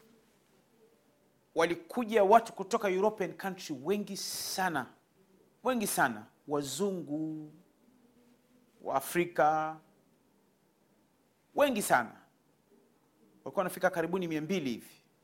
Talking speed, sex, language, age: 80 wpm, male, Swahili, 40-59